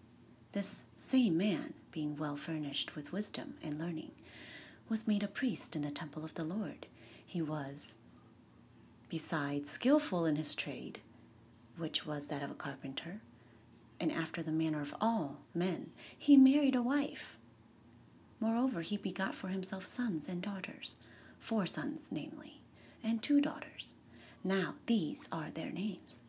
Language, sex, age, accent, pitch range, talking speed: English, female, 30-49, American, 145-215 Hz, 145 wpm